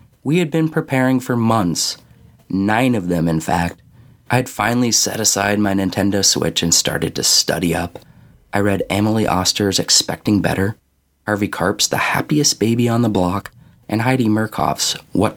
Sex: male